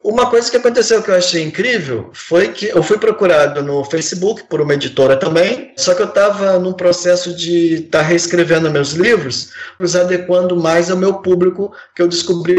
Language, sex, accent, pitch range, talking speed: Portuguese, male, Brazilian, 175-240 Hz, 185 wpm